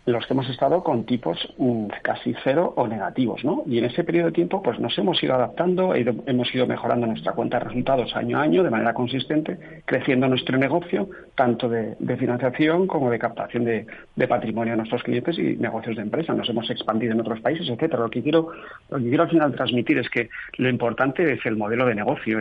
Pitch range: 115-135 Hz